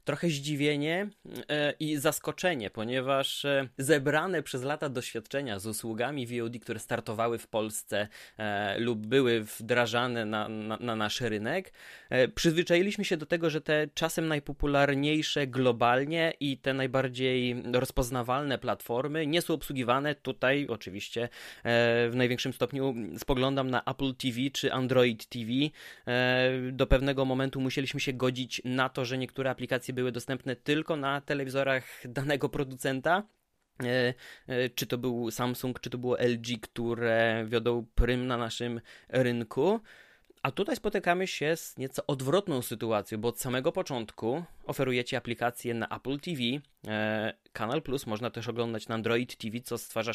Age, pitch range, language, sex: 20-39, 120-140 Hz, Polish, male